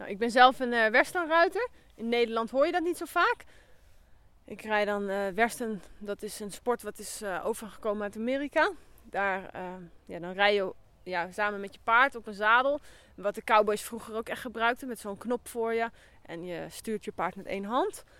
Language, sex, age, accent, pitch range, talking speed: Dutch, female, 20-39, Dutch, 200-250 Hz, 210 wpm